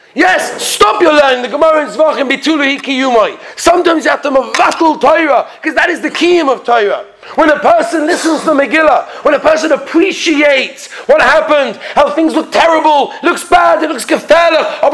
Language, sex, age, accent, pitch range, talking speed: English, male, 40-59, British, 275-335 Hz, 170 wpm